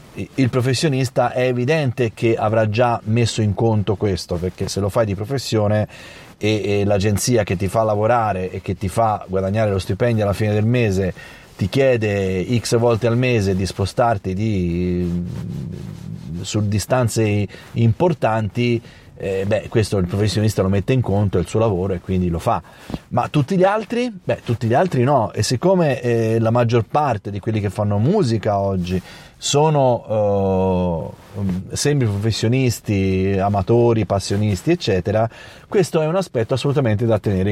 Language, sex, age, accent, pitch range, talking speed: Italian, male, 30-49, native, 100-130 Hz, 155 wpm